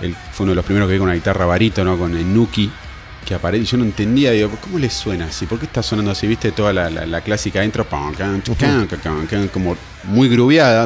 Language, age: Spanish, 30-49